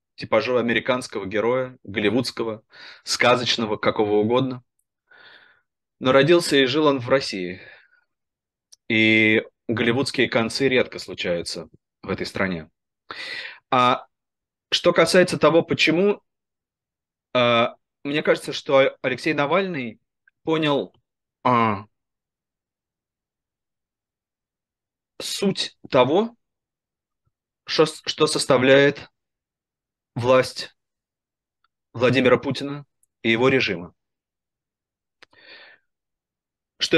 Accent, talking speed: native, 75 wpm